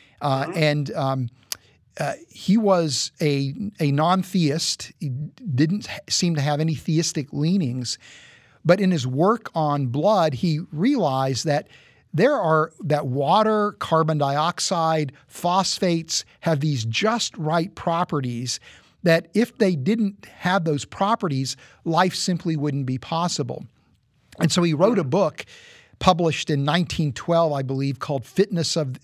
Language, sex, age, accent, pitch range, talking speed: English, male, 50-69, American, 140-180 Hz, 130 wpm